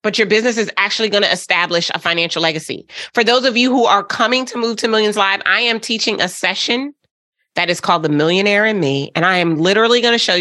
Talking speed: 230 wpm